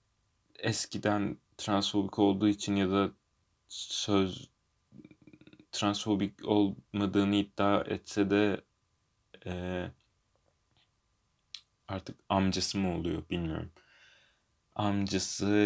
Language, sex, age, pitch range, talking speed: Turkish, male, 30-49, 95-110 Hz, 75 wpm